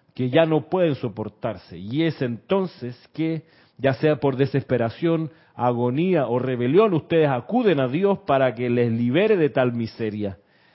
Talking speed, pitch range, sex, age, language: 150 wpm, 125-165 Hz, male, 40-59, Spanish